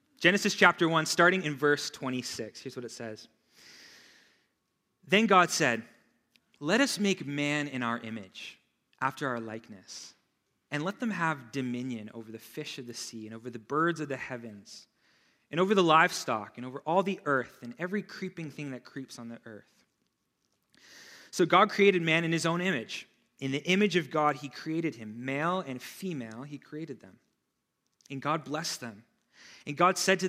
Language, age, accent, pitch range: English, 20-39, American, 120-165 Hz